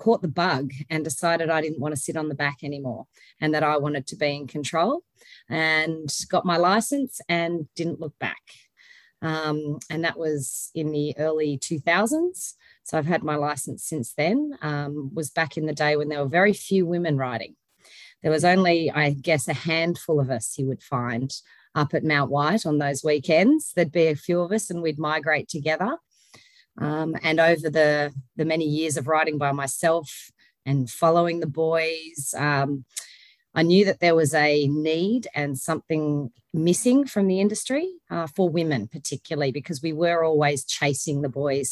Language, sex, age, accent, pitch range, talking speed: English, female, 30-49, Australian, 145-170 Hz, 185 wpm